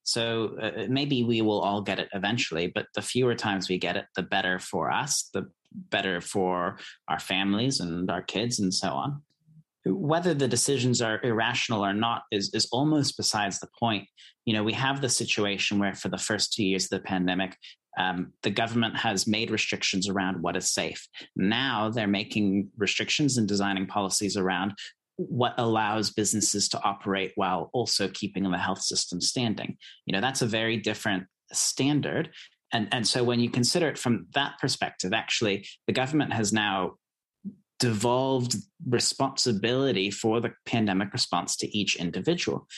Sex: male